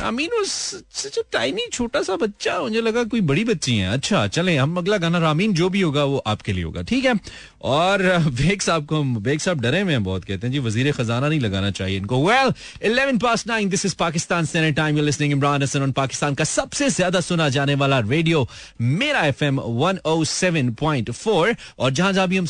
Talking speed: 50 wpm